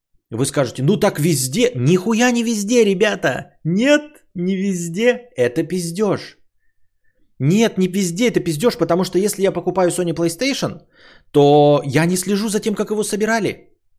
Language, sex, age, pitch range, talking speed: Bulgarian, male, 20-39, 115-155 Hz, 150 wpm